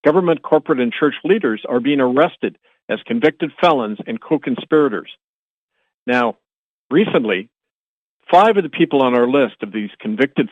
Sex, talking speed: male, 145 wpm